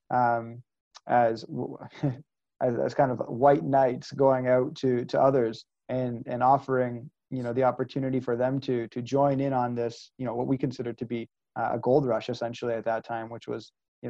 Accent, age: American, 30-49